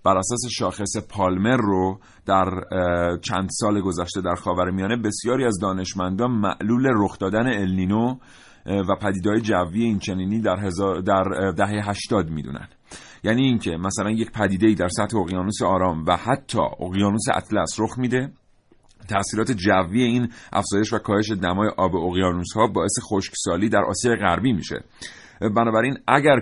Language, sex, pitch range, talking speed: Persian, male, 95-110 Hz, 140 wpm